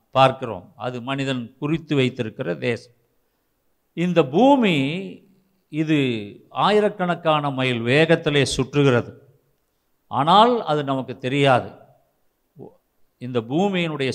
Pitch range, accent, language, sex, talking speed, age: 125-180 Hz, native, Tamil, male, 80 wpm, 50-69